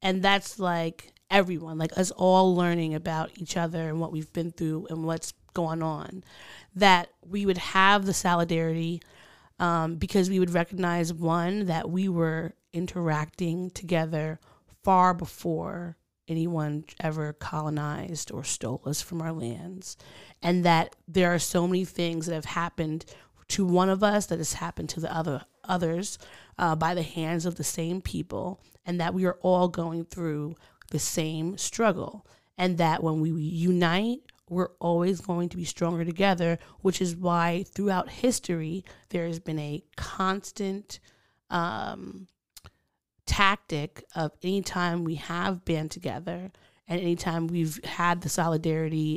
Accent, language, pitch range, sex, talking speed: American, English, 160-185 Hz, female, 155 wpm